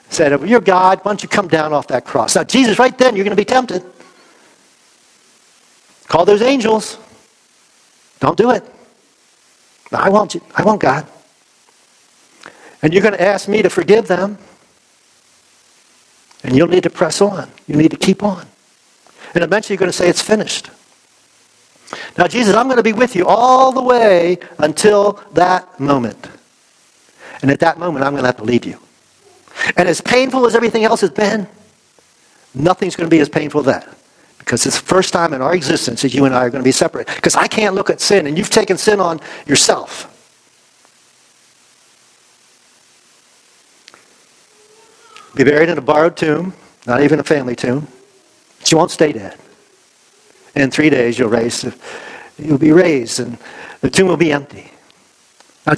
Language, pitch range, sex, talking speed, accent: English, 150-210 Hz, male, 170 wpm, American